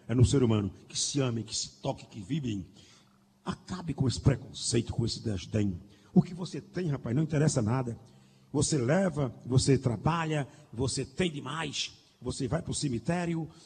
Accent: Brazilian